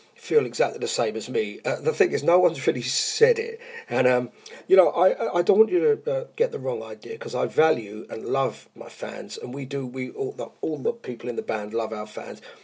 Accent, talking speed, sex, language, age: British, 245 wpm, male, English, 40-59